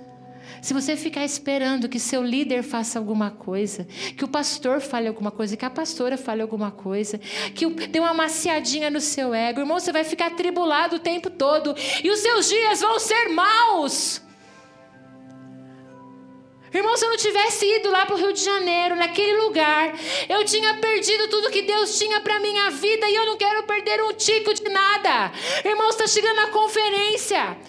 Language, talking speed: Portuguese, 180 wpm